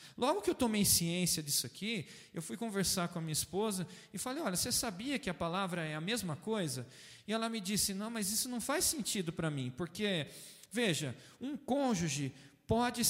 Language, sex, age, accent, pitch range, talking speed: Portuguese, male, 40-59, Brazilian, 170-245 Hz, 195 wpm